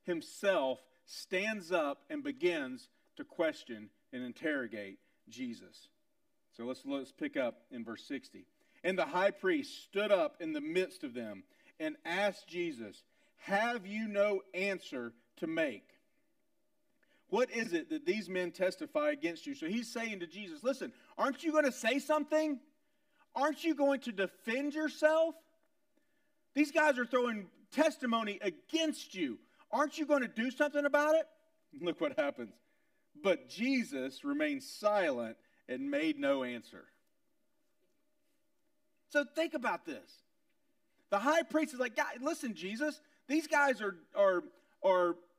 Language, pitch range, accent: English, 235-300 Hz, American